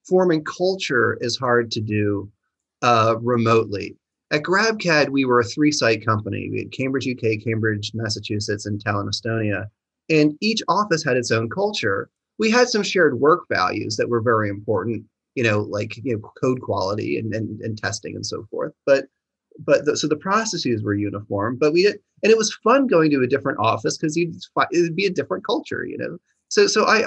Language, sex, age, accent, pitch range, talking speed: English, male, 30-49, American, 115-165 Hz, 195 wpm